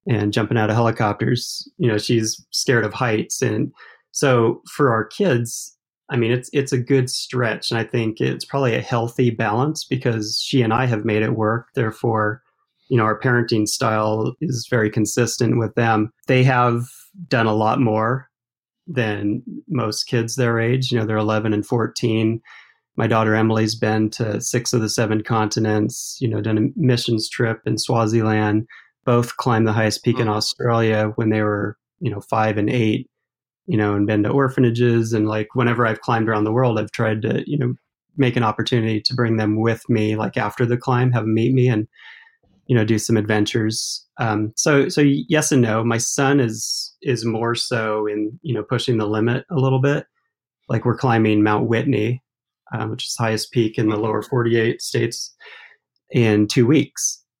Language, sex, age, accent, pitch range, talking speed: English, male, 30-49, American, 110-125 Hz, 190 wpm